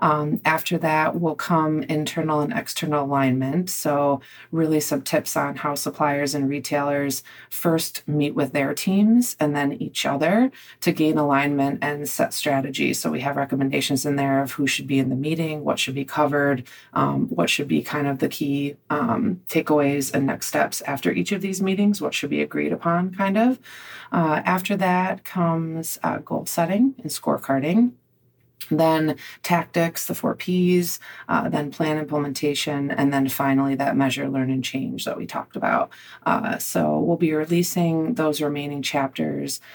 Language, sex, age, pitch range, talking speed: English, female, 30-49, 140-160 Hz, 170 wpm